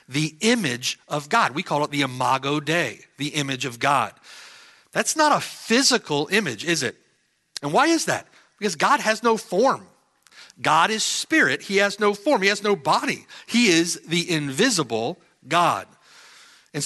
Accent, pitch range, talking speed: American, 145-205 Hz, 165 wpm